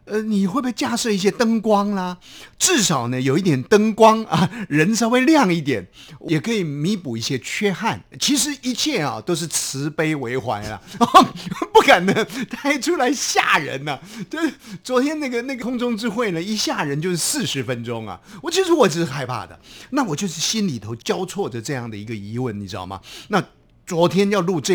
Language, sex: Chinese, male